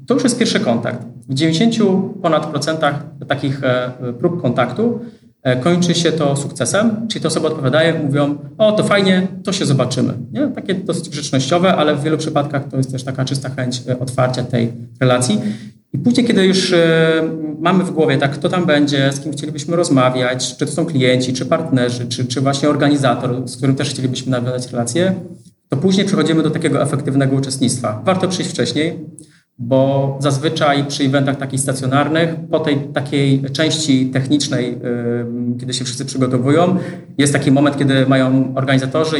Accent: native